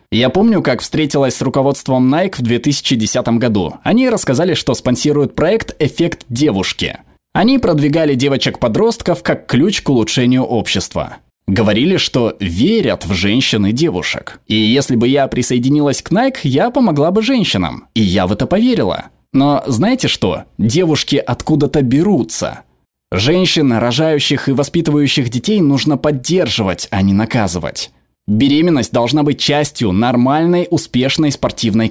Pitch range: 115-155 Hz